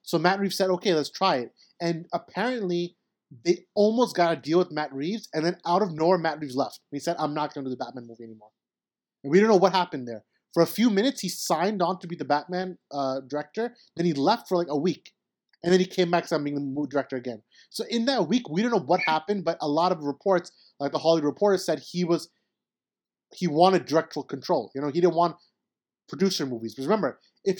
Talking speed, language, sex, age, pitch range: 235 wpm, English, male, 30-49, 145-190 Hz